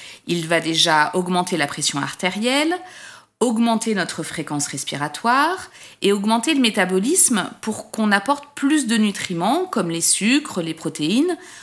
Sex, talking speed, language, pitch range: female, 135 wpm, French, 180-260 Hz